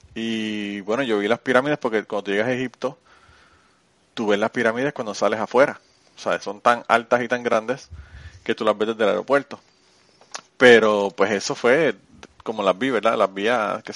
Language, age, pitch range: Spanish, 20-39, 105-125 Hz